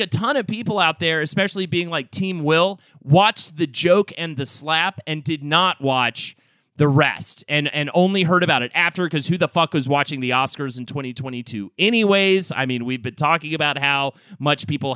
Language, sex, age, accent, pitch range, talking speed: English, male, 30-49, American, 135-180 Hz, 200 wpm